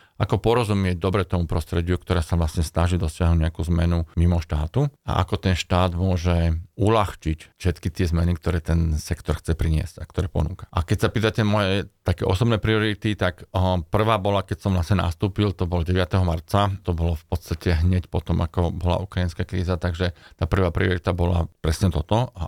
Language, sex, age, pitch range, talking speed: Slovak, male, 40-59, 85-95 Hz, 180 wpm